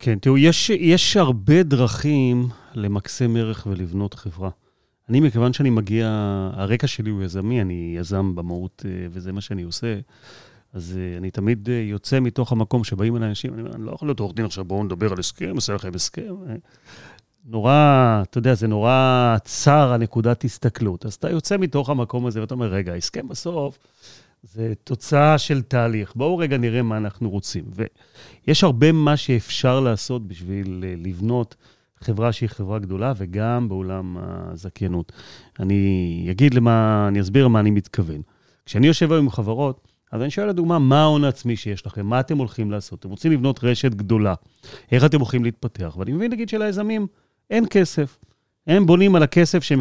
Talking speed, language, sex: 165 wpm, Hebrew, male